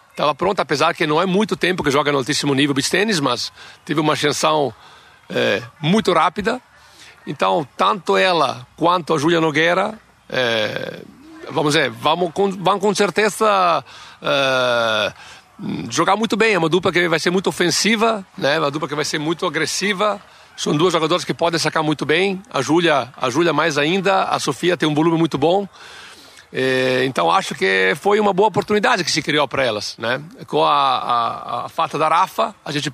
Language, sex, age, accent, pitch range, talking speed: Portuguese, male, 60-79, Brazilian, 145-185 Hz, 180 wpm